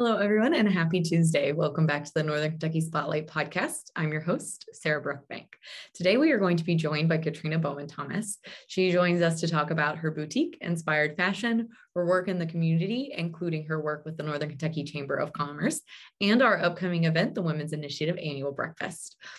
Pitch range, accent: 155-195 Hz, American